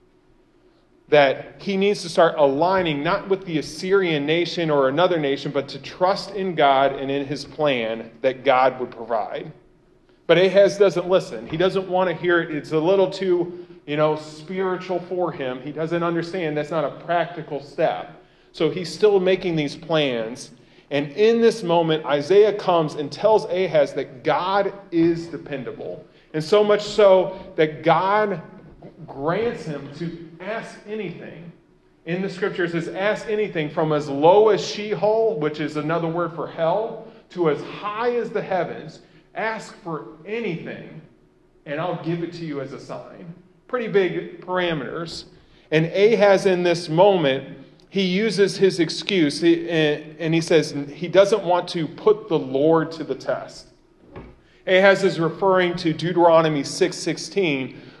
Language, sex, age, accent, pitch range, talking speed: English, male, 40-59, American, 155-195 Hz, 155 wpm